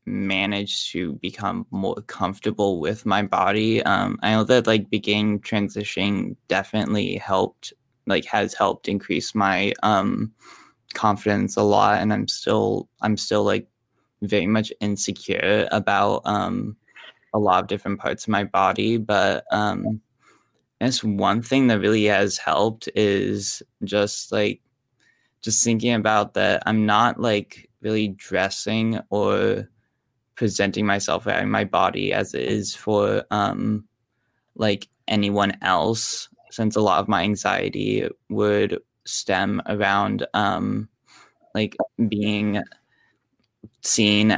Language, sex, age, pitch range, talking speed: English, male, 20-39, 100-110 Hz, 125 wpm